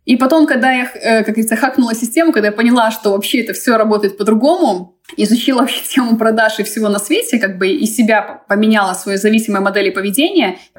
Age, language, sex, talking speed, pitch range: 20-39, Russian, female, 195 wpm, 200-260 Hz